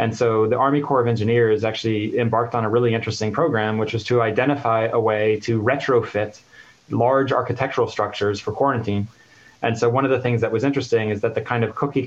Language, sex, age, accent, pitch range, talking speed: English, male, 20-39, American, 110-120 Hz, 210 wpm